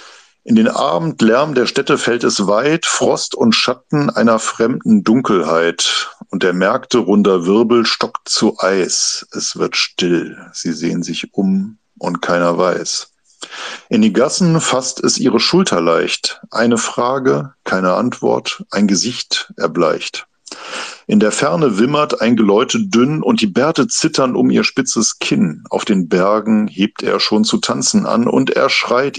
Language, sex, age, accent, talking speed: German, male, 50-69, German, 150 wpm